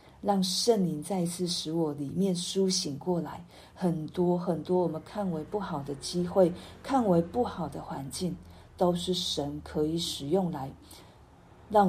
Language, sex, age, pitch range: Chinese, female, 50-69, 160-195 Hz